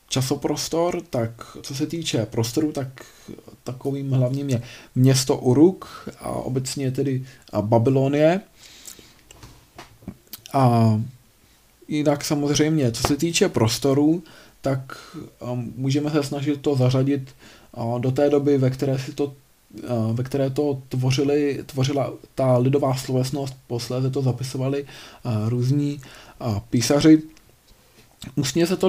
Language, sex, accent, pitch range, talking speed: Czech, male, native, 125-145 Hz, 110 wpm